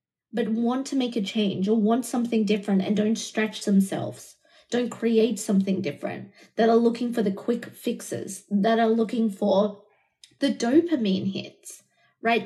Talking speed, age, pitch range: 160 wpm, 20-39, 205-250 Hz